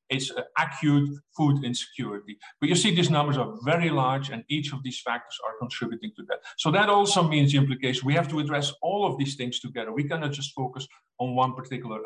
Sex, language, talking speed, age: male, English, 215 wpm, 50-69